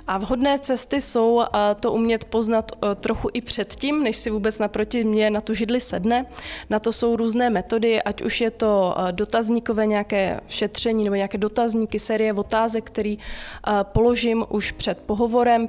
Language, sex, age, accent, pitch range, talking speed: Czech, female, 20-39, native, 205-230 Hz, 155 wpm